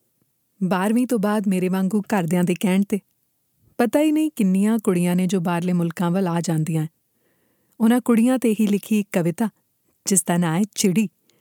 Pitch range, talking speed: 170-215 Hz, 175 wpm